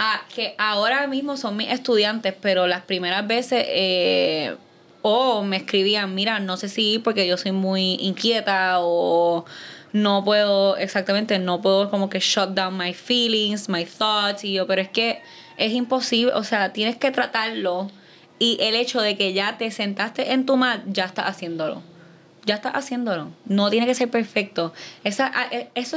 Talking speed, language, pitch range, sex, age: 175 wpm, Spanish, 185-230 Hz, female, 20-39